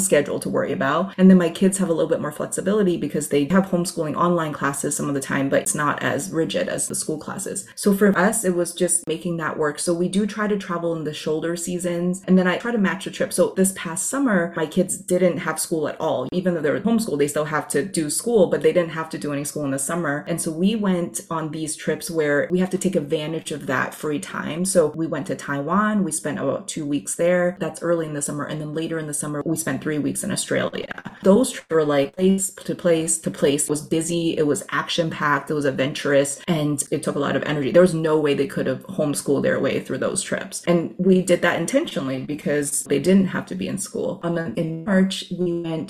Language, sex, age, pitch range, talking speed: English, female, 30-49, 155-185 Hz, 250 wpm